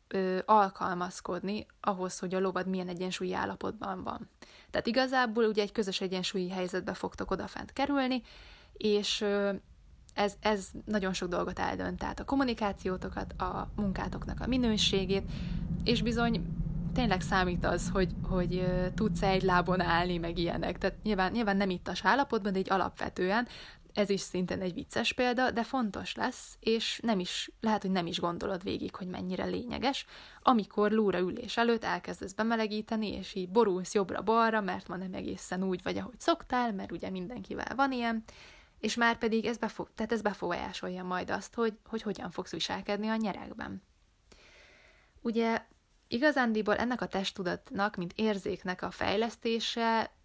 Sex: female